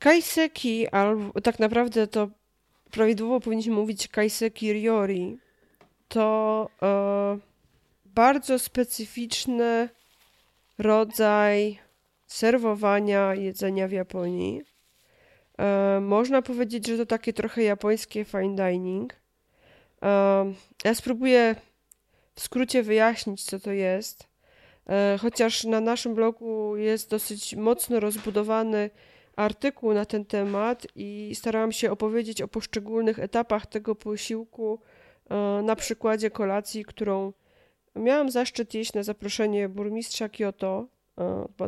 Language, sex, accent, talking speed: Polish, female, native, 100 wpm